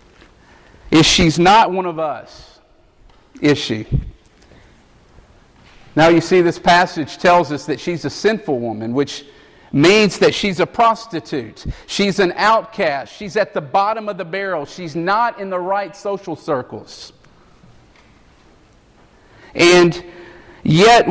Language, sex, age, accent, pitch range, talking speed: English, male, 50-69, American, 135-185 Hz, 130 wpm